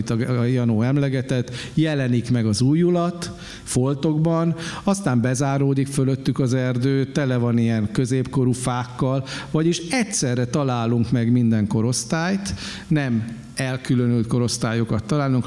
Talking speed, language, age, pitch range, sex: 115 wpm, Hungarian, 50-69, 115-140 Hz, male